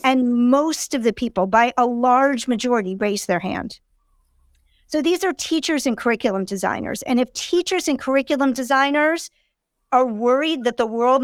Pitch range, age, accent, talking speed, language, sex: 215-270 Hz, 50-69, American, 160 wpm, English, female